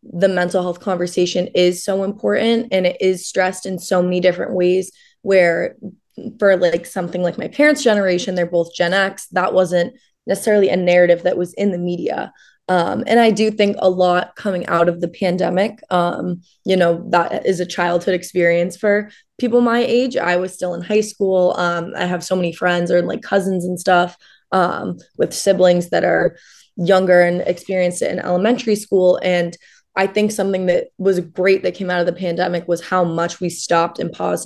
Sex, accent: female, American